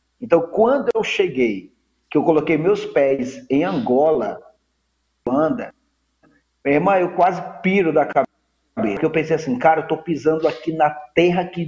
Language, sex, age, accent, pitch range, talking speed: Portuguese, male, 40-59, Brazilian, 145-185 Hz, 165 wpm